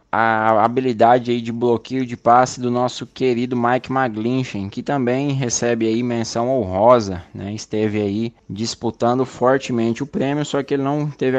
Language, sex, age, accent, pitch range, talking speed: Portuguese, male, 20-39, Brazilian, 115-130 Hz, 140 wpm